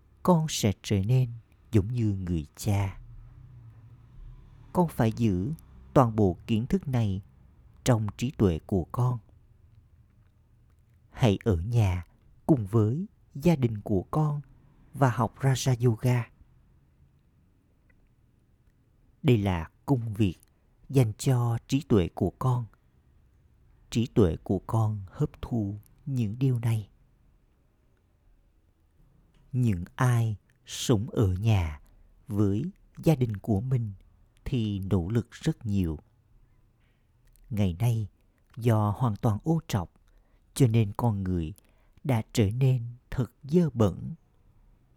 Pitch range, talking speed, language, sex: 95-125 Hz, 115 wpm, Vietnamese, male